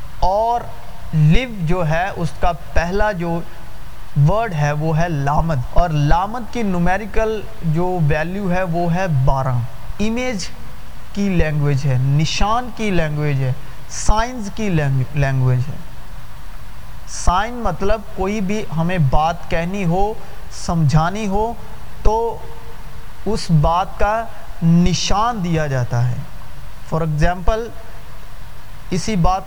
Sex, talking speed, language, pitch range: male, 115 wpm, Urdu, 135-195 Hz